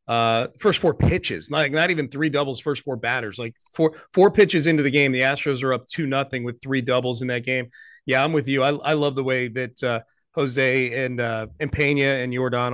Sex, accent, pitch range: male, American, 125-150 Hz